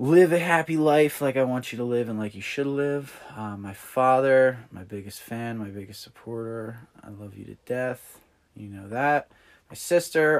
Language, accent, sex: English, American, male